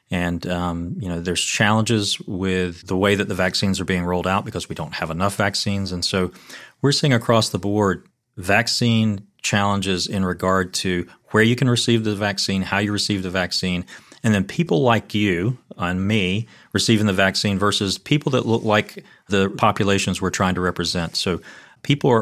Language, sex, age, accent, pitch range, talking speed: English, male, 30-49, American, 90-110 Hz, 185 wpm